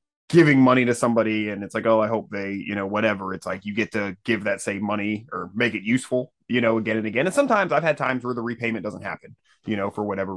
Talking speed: 265 wpm